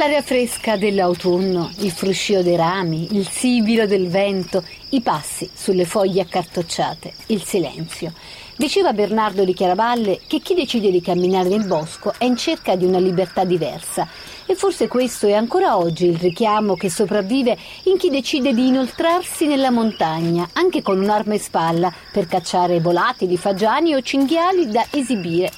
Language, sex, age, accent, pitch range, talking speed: Italian, female, 50-69, native, 190-255 Hz, 155 wpm